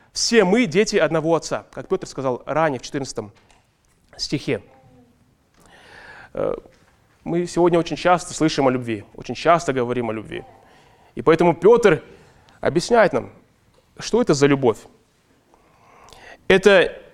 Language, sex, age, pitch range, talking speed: Russian, male, 20-39, 150-210 Hz, 120 wpm